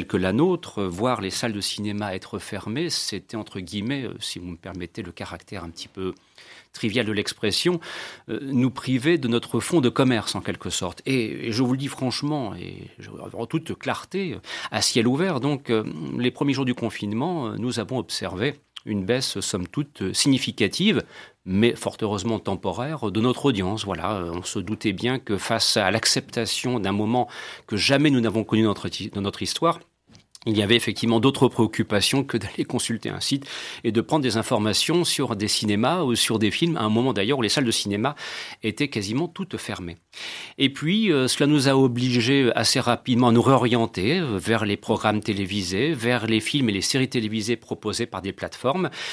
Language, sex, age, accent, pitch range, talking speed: French, male, 40-59, French, 105-130 Hz, 185 wpm